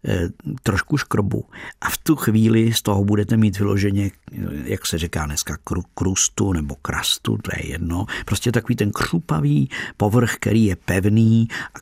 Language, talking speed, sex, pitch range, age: Czech, 150 wpm, male, 95-115 Hz, 50-69